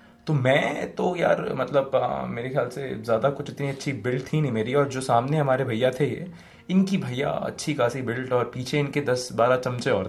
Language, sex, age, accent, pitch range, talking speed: Hindi, male, 20-39, native, 110-150 Hz, 210 wpm